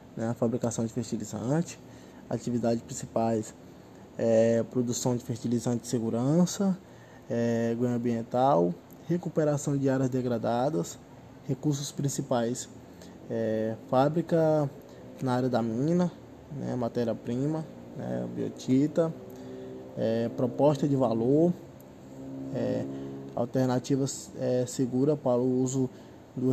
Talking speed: 95 wpm